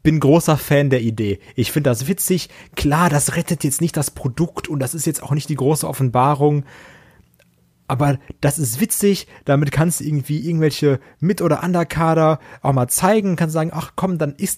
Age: 30-49